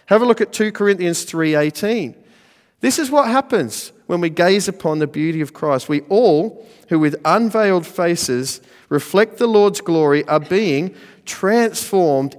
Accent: Australian